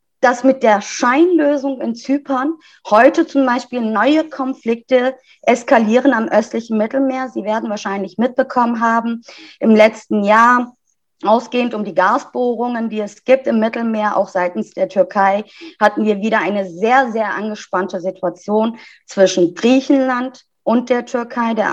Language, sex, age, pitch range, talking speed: German, female, 20-39, 195-255 Hz, 140 wpm